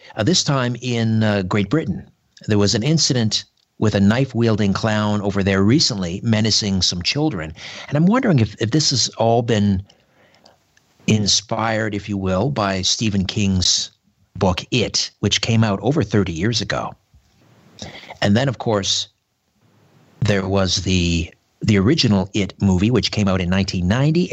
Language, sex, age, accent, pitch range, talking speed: English, male, 50-69, American, 100-130 Hz, 155 wpm